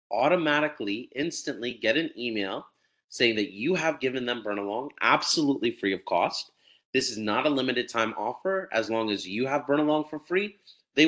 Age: 30-49